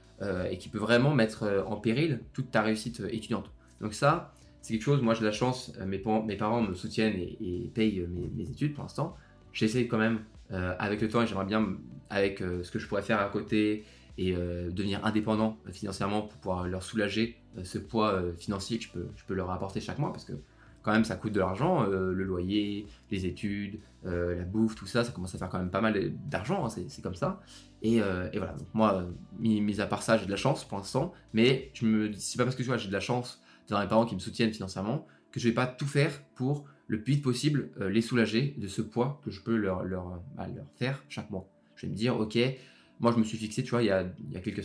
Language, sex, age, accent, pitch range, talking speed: French, male, 20-39, French, 95-115 Hz, 240 wpm